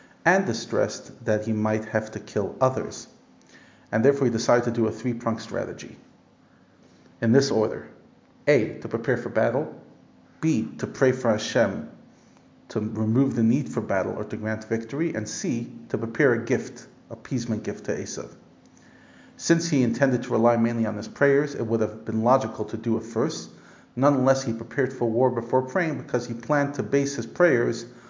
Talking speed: 175 wpm